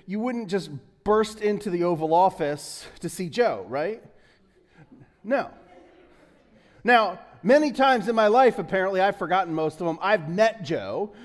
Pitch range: 175-235 Hz